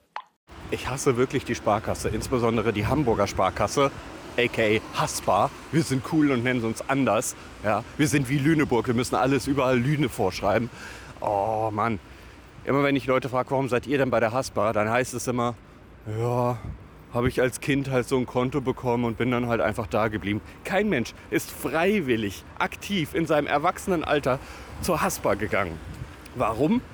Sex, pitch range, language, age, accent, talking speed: male, 110-150 Hz, German, 30-49, German, 170 wpm